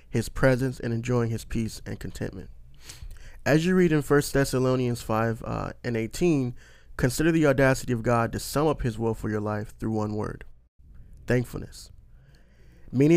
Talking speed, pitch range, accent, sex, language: 165 wpm, 110-135 Hz, American, male, English